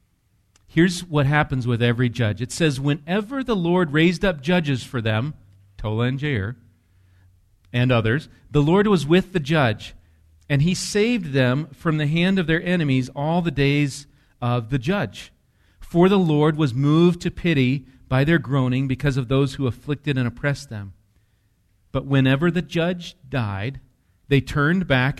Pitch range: 110-150 Hz